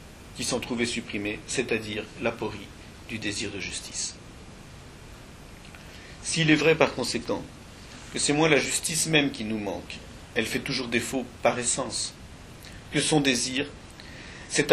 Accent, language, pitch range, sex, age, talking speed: French, French, 115-145 Hz, male, 50-69, 135 wpm